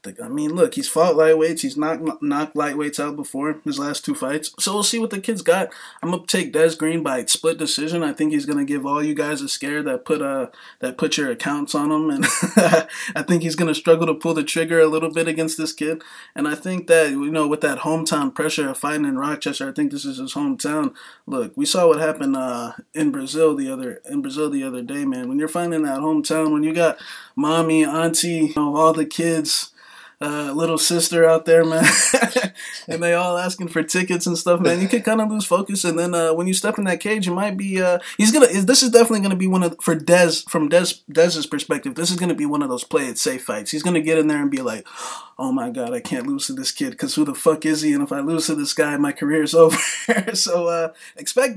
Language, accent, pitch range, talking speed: English, American, 155-220 Hz, 250 wpm